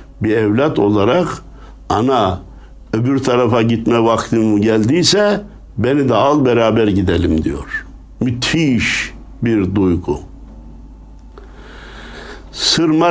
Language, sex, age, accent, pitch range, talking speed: Turkish, male, 60-79, native, 100-130 Hz, 85 wpm